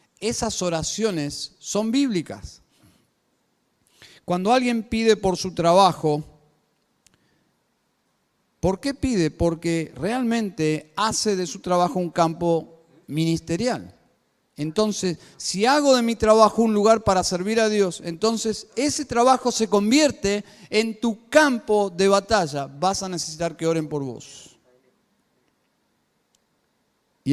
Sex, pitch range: male, 160-210 Hz